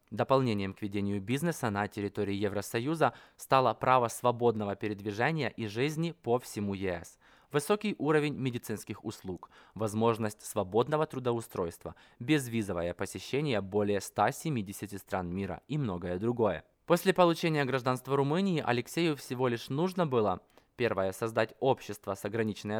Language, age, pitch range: Russian, 20-39, 105-140 Hz